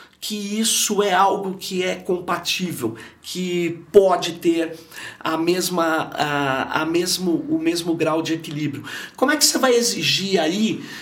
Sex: male